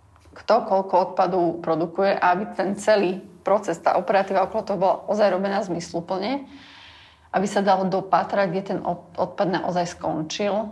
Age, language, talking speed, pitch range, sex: 30-49, Slovak, 140 wpm, 175-200 Hz, female